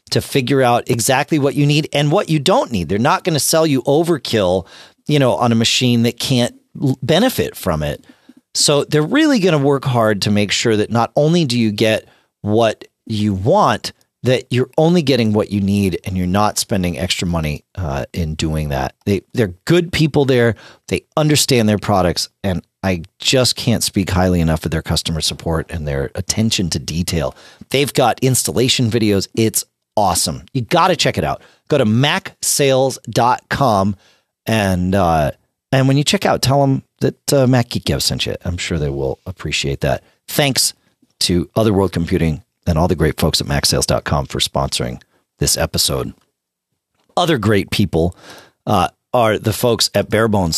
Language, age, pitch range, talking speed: English, 40-59, 90-140 Hz, 175 wpm